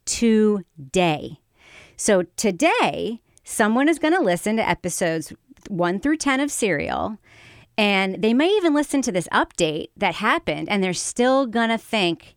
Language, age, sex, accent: English, 40-59, female, American